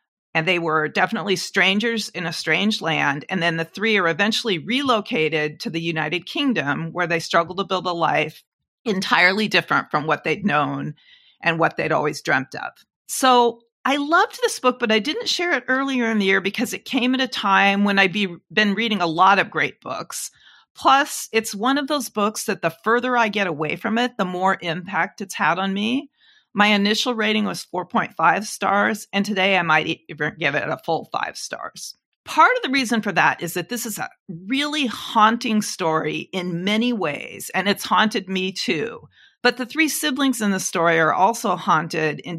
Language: English